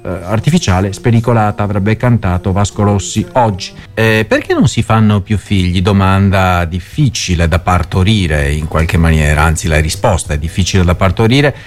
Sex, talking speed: male, 145 wpm